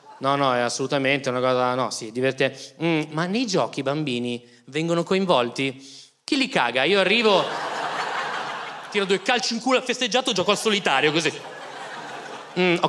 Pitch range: 135-200 Hz